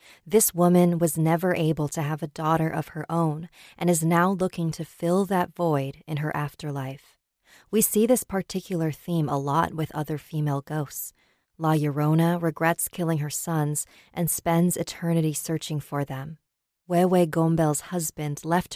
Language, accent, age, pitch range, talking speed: English, American, 30-49, 150-170 Hz, 160 wpm